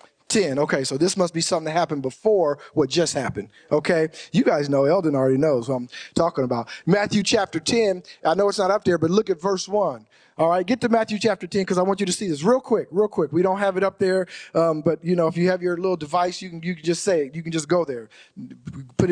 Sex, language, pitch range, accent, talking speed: male, English, 170-225 Hz, American, 265 wpm